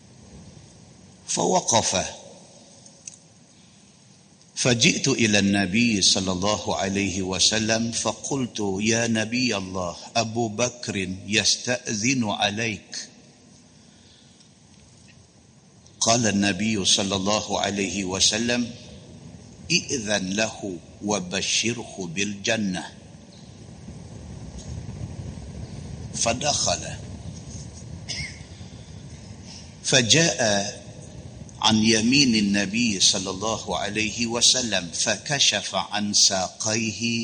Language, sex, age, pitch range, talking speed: Malay, male, 50-69, 100-120 Hz, 60 wpm